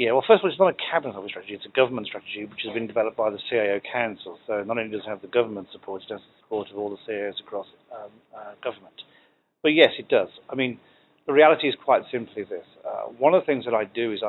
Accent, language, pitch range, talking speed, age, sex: British, English, 105-125 Hz, 270 wpm, 40-59, male